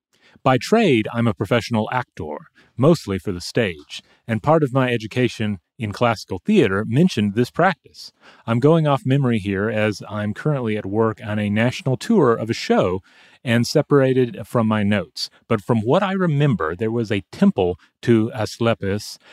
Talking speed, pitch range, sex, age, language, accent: 170 wpm, 105-130 Hz, male, 30-49, English, American